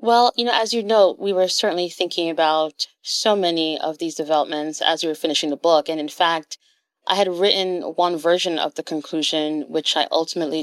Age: 30-49